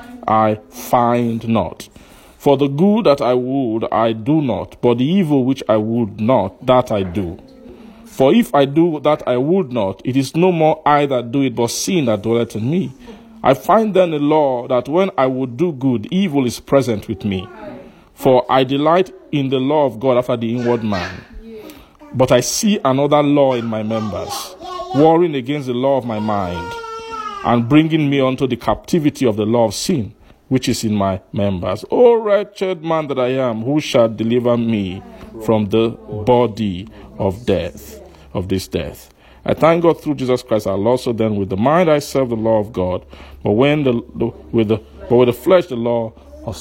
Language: English